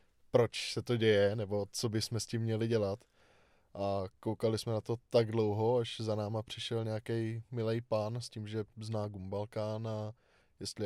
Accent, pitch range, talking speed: native, 110-130 Hz, 175 wpm